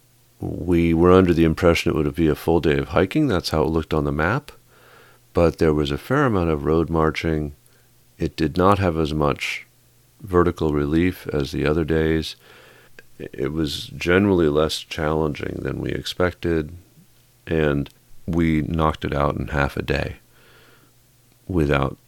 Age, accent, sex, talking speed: 40-59, American, male, 160 wpm